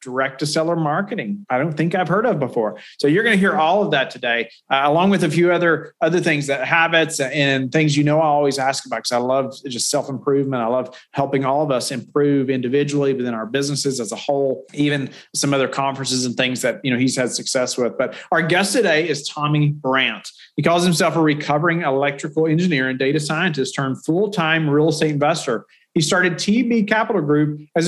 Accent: American